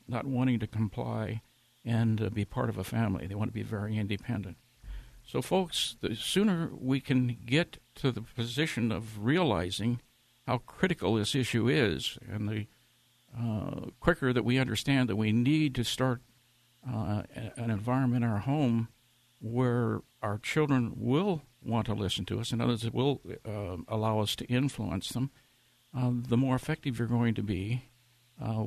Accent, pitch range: American, 115-135 Hz